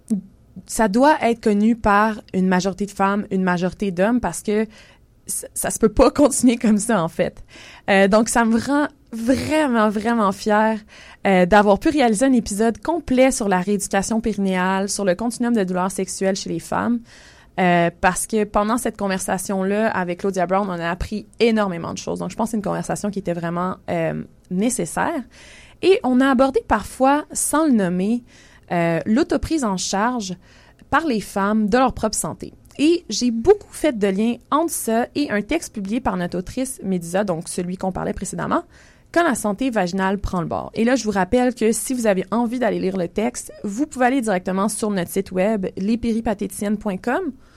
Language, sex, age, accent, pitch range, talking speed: English, female, 20-39, Canadian, 190-245 Hz, 190 wpm